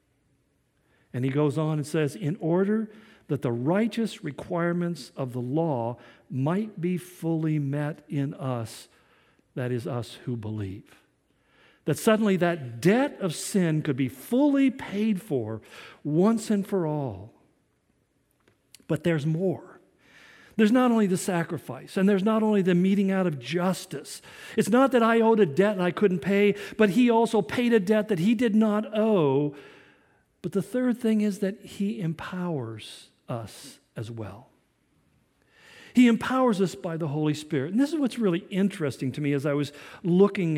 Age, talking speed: 50-69, 165 wpm